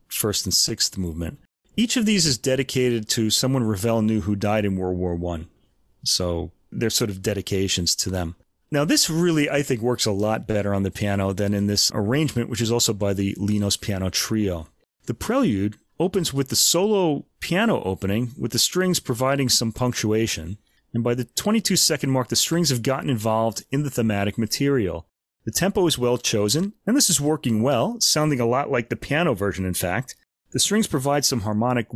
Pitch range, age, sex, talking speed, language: 105-155 Hz, 30-49, male, 195 wpm, English